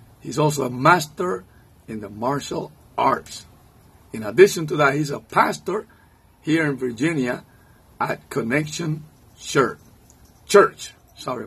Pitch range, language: 110-145 Hz, English